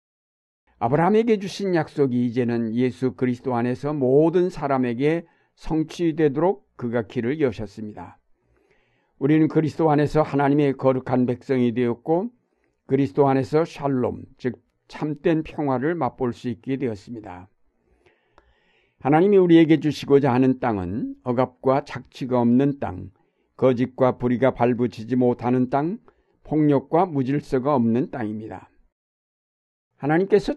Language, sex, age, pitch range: Korean, male, 60-79, 120-150 Hz